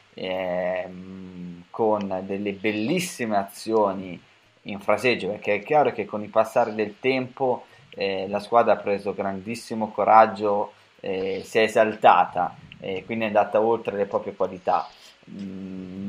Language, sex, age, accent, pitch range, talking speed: Italian, male, 20-39, native, 100-125 Hz, 135 wpm